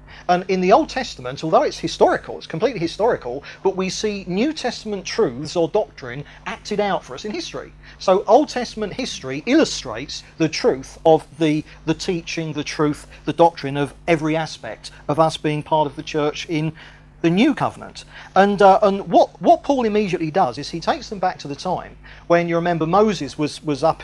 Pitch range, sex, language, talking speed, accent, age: 150-195 Hz, male, English, 190 wpm, British, 40-59